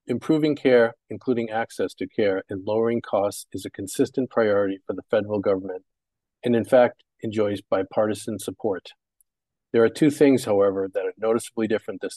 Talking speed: 165 wpm